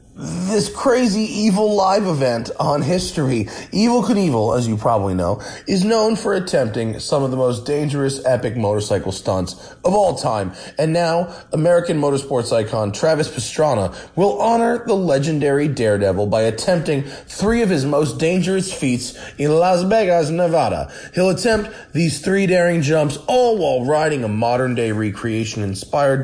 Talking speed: 150 wpm